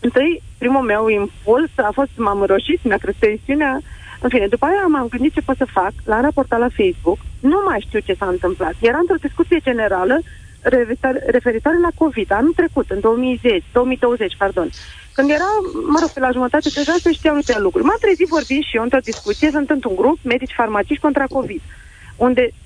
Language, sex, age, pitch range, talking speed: Romanian, female, 30-49, 235-330 Hz, 190 wpm